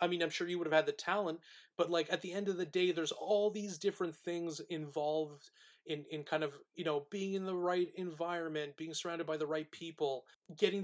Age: 30-49